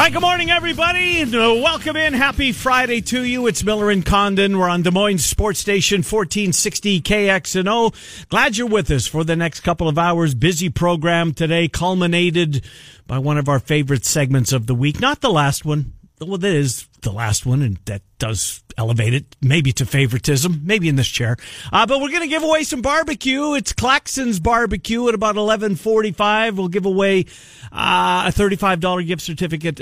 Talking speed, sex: 175 wpm, male